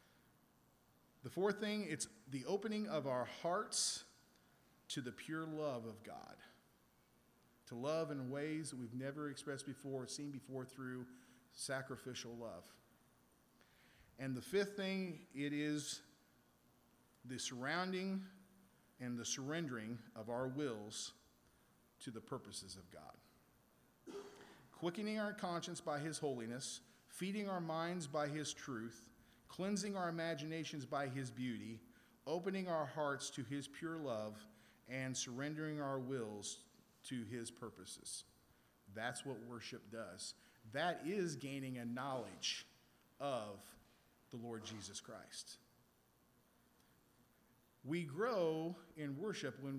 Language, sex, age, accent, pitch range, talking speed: English, male, 40-59, American, 115-155 Hz, 120 wpm